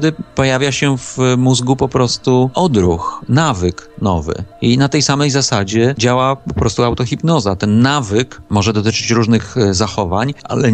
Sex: male